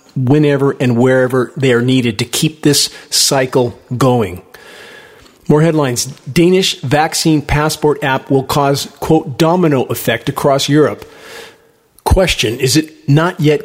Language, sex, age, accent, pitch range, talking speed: English, male, 40-59, American, 125-150 Hz, 130 wpm